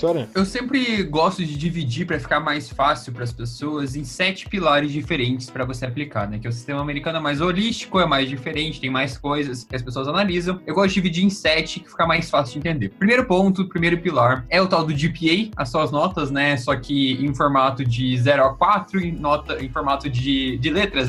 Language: Portuguese